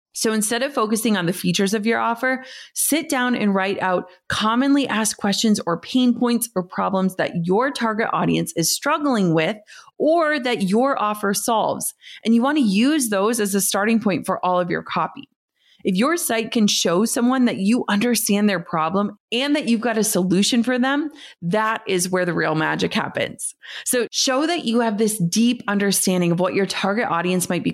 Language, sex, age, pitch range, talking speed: English, female, 30-49, 185-240 Hz, 195 wpm